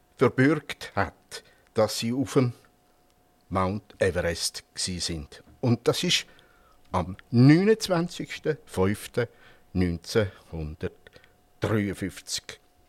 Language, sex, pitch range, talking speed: German, male, 100-155 Hz, 70 wpm